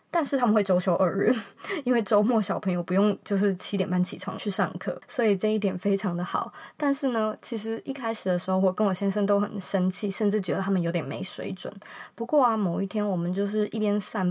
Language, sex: Chinese, female